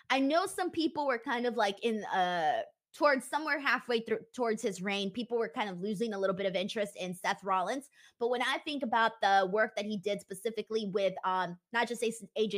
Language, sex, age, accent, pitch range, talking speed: English, female, 20-39, American, 200-250 Hz, 220 wpm